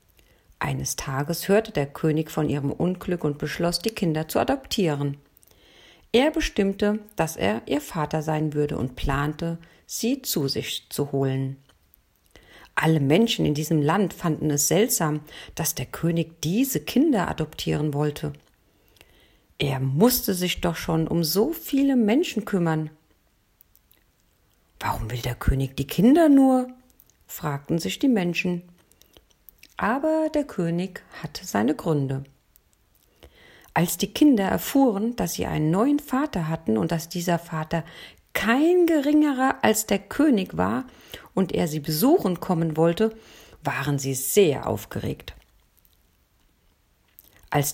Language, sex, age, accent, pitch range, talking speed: German, female, 50-69, German, 135-200 Hz, 130 wpm